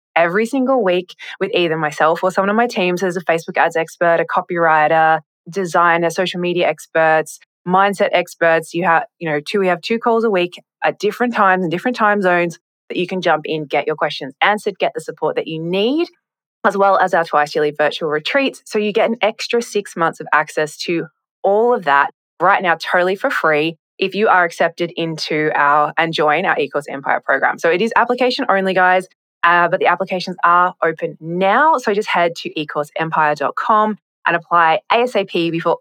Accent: Australian